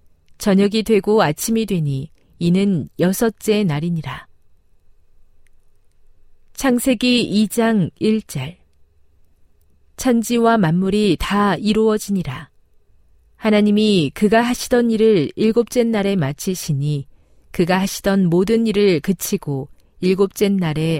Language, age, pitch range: Korean, 40-59, 140-210 Hz